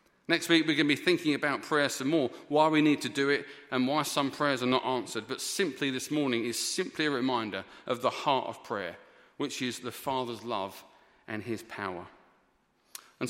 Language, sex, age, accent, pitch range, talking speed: English, male, 40-59, British, 110-150 Hz, 210 wpm